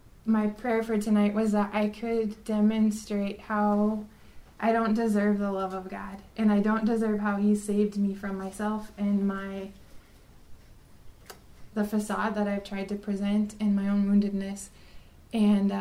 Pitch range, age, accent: 200-215 Hz, 20-39, American